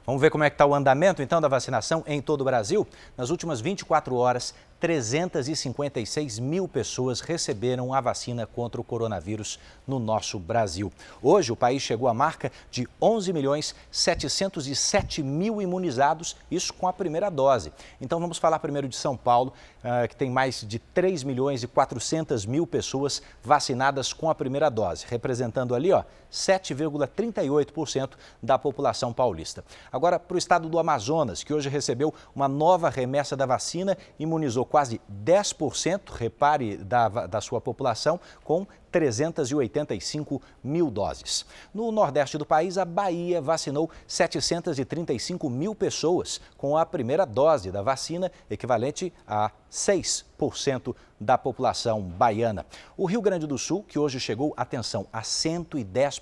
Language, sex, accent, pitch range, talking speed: Portuguese, male, Brazilian, 120-160 Hz, 145 wpm